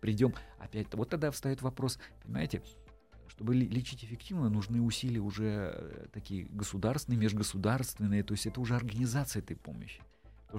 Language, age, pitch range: Russian, 40-59, 95-115 Hz